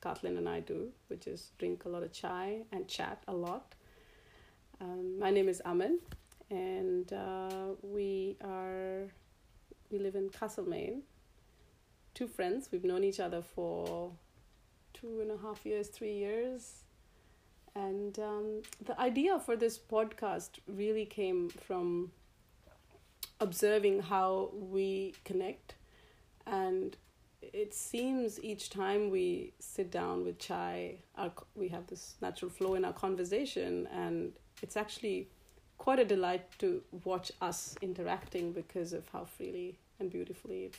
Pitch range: 175-215 Hz